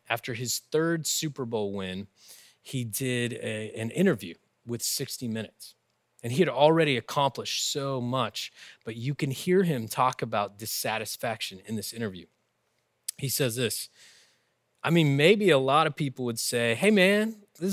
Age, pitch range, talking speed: 20-39, 115-150 Hz, 160 wpm